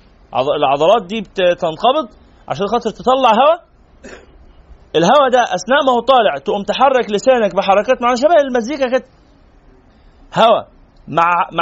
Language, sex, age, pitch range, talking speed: Arabic, male, 30-49, 180-245 Hz, 120 wpm